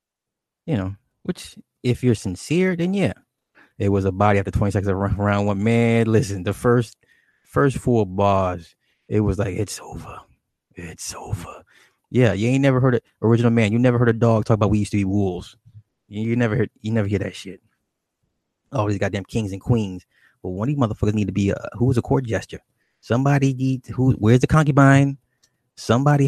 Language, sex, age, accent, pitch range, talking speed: English, male, 20-39, American, 100-120 Hz, 200 wpm